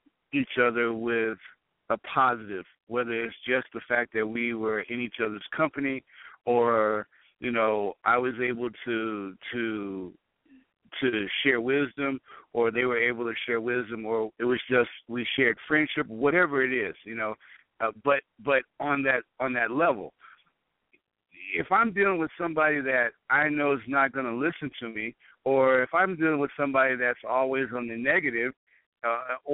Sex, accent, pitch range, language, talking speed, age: male, American, 120-155 Hz, English, 165 wpm, 60-79